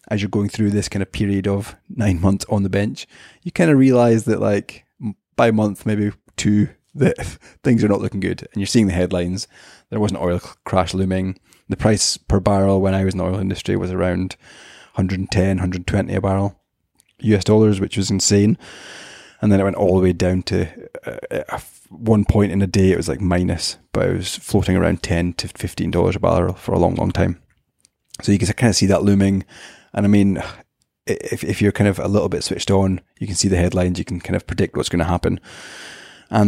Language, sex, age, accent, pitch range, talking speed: English, male, 20-39, British, 90-105 Hz, 220 wpm